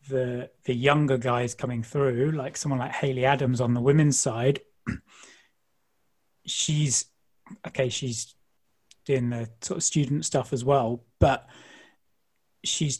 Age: 30-49